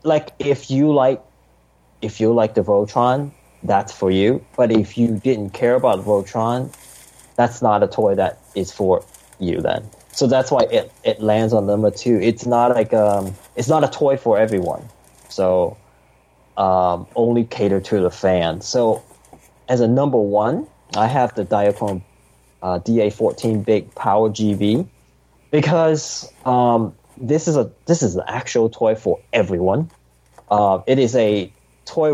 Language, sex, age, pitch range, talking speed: English, male, 20-39, 100-135 Hz, 160 wpm